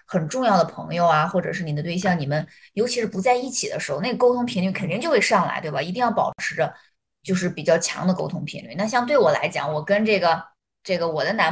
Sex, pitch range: female, 180-250 Hz